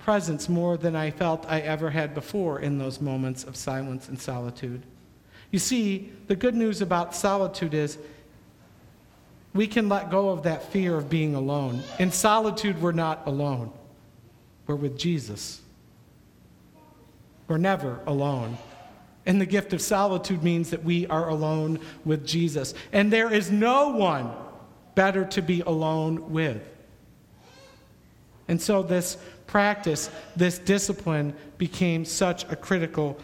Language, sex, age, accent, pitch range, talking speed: English, male, 50-69, American, 155-225 Hz, 140 wpm